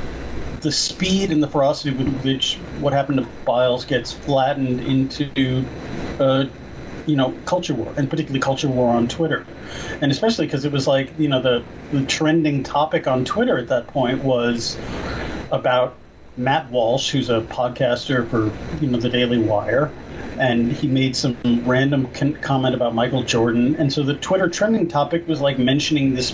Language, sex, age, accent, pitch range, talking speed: English, male, 30-49, American, 125-155 Hz, 170 wpm